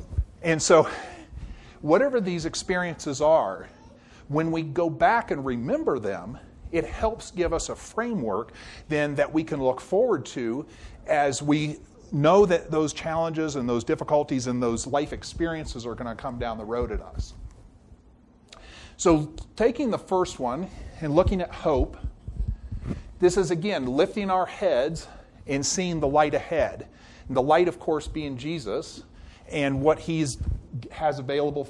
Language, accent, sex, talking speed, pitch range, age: English, American, male, 150 wpm, 130-170 Hz, 40-59